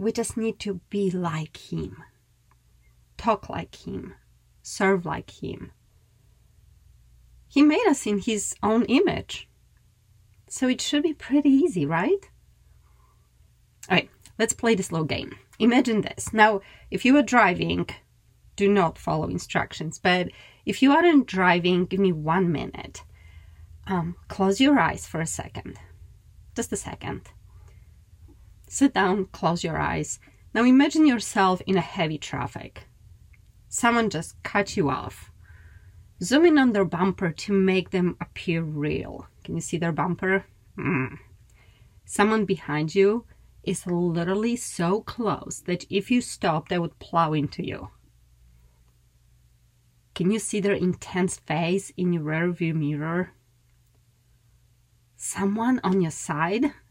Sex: female